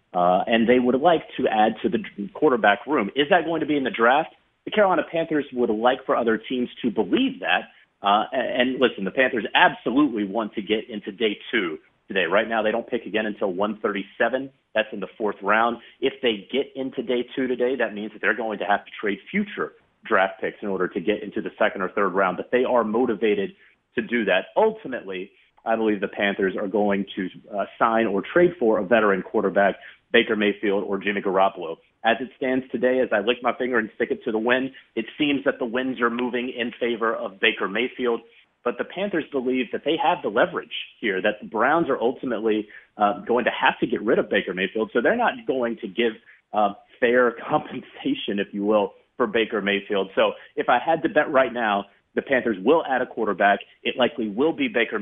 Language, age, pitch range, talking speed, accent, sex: English, 30-49, 105-130 Hz, 220 wpm, American, male